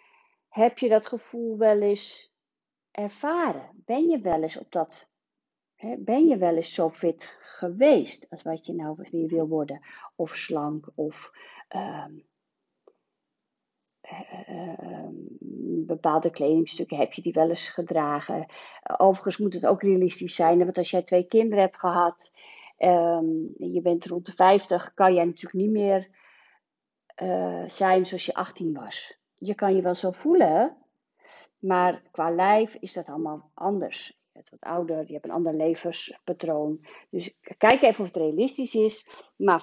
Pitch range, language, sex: 170-265 Hz, Dutch, female